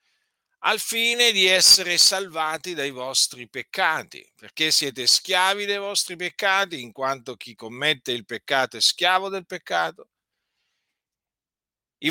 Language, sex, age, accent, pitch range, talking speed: Italian, male, 50-69, native, 130-195 Hz, 125 wpm